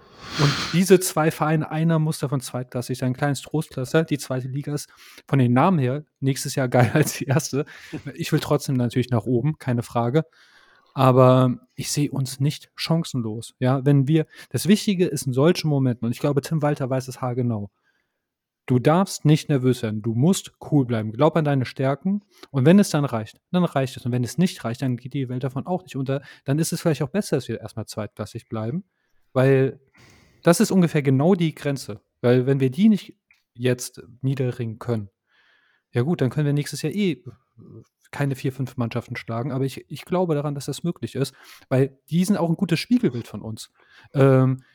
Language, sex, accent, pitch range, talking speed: German, male, German, 125-160 Hz, 200 wpm